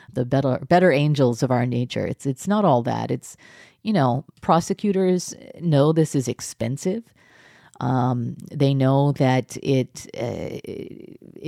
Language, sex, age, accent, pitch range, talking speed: English, female, 40-59, American, 125-150 Hz, 135 wpm